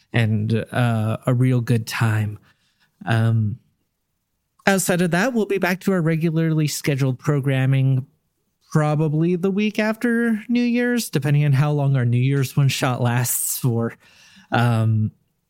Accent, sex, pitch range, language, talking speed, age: American, male, 125-190 Hz, English, 140 wpm, 30-49